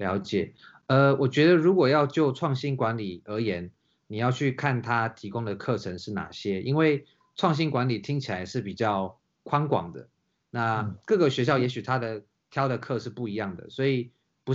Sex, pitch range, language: male, 105-135 Hz, Chinese